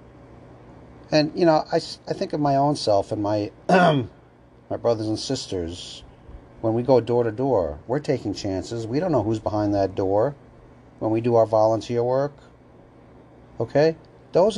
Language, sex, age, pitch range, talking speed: English, male, 40-59, 80-120 Hz, 165 wpm